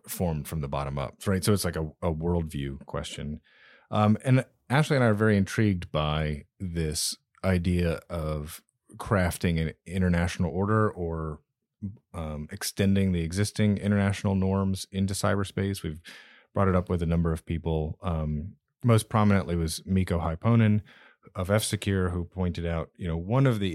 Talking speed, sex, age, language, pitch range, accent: 160 wpm, male, 30-49, English, 85-105 Hz, American